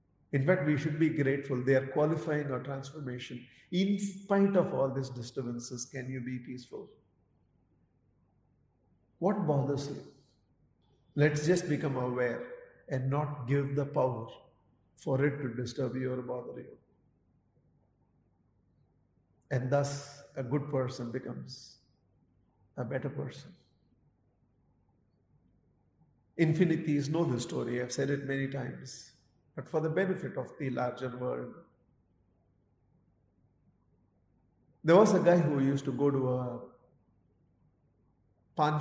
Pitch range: 125-145 Hz